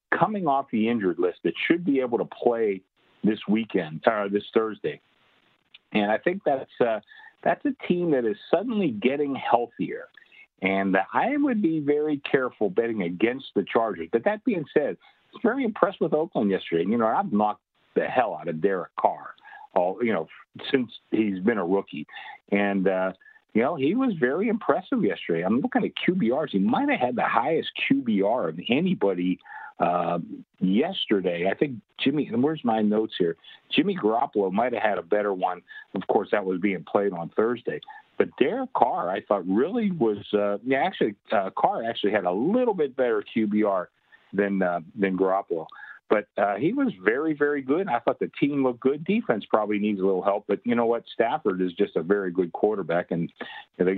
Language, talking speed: English, 190 wpm